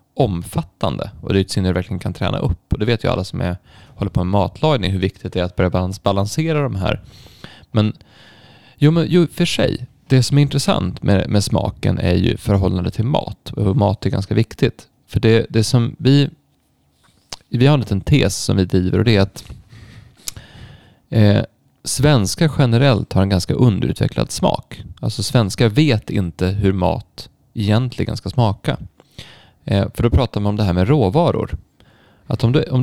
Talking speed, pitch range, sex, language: 180 wpm, 95-125 Hz, male, Swedish